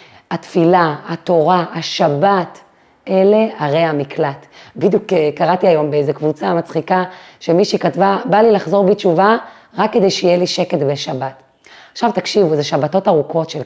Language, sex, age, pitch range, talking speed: Hebrew, female, 30-49, 155-185 Hz, 130 wpm